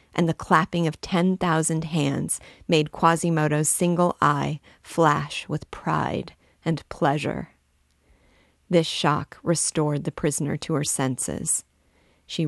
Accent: American